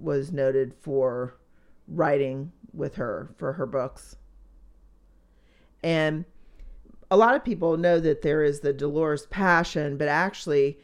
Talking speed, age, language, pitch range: 125 wpm, 40-59, English, 135-160 Hz